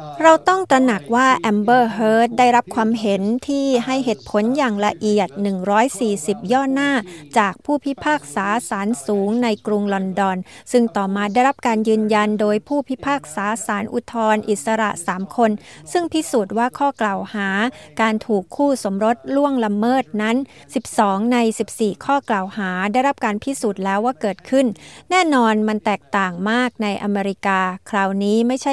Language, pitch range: Thai, 200-250 Hz